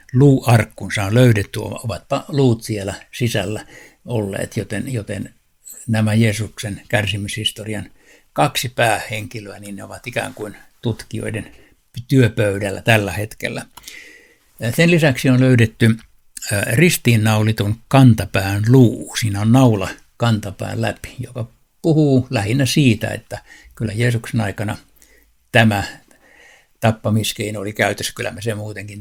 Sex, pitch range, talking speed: male, 110-125 Hz, 110 wpm